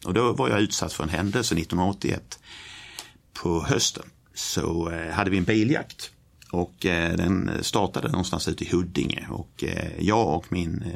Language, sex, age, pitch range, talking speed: Swedish, male, 60-79, 85-100 Hz, 150 wpm